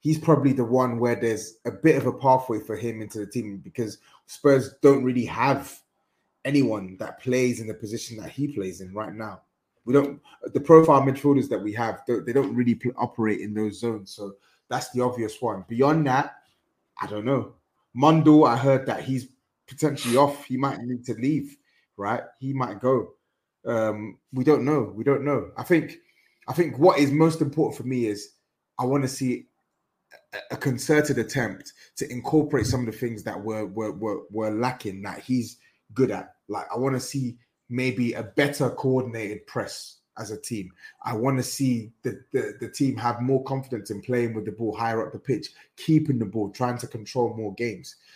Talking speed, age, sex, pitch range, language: 195 wpm, 20-39, male, 110-140 Hz, English